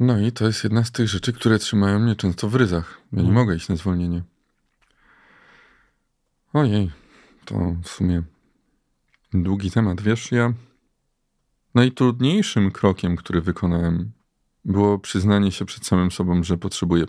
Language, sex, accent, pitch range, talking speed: Polish, male, native, 90-115 Hz, 140 wpm